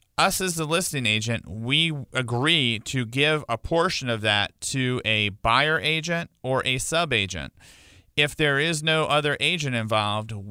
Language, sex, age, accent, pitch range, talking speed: English, male, 40-59, American, 110-145 Hz, 160 wpm